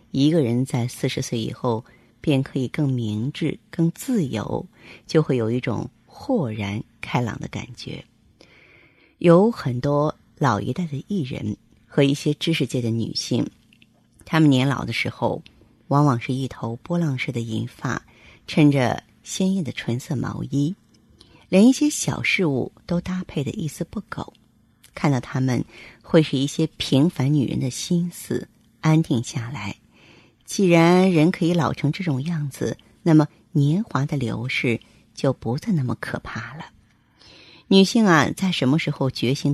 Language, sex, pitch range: Chinese, female, 120-165 Hz